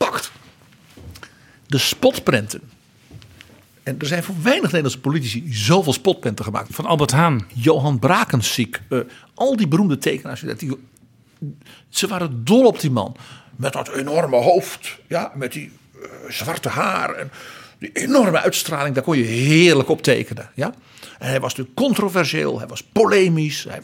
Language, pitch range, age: Dutch, 125-175 Hz, 50-69